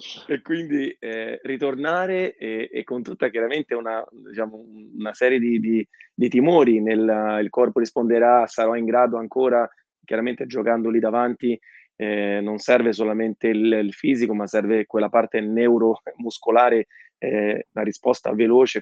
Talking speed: 135 wpm